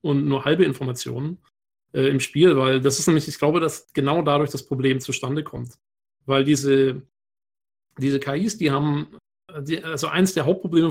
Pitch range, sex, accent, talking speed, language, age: 135-175 Hz, male, German, 170 wpm, German, 40-59